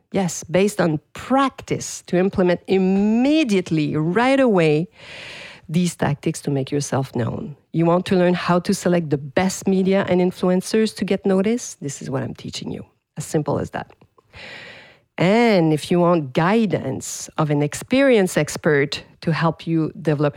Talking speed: 155 wpm